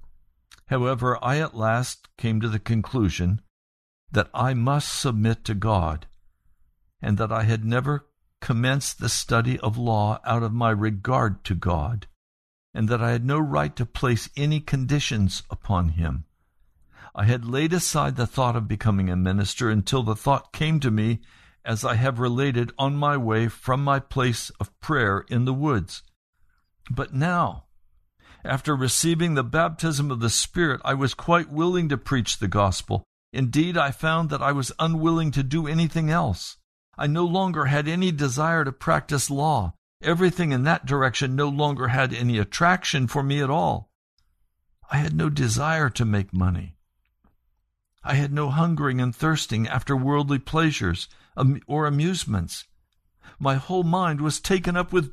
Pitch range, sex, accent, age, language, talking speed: 105-150 Hz, male, American, 60-79, English, 160 wpm